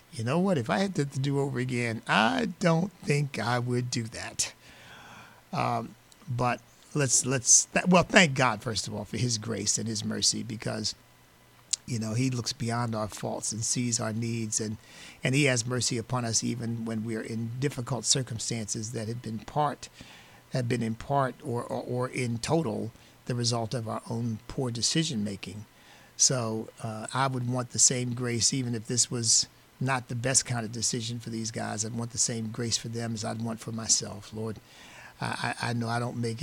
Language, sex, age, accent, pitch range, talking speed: English, male, 50-69, American, 115-130 Hz, 195 wpm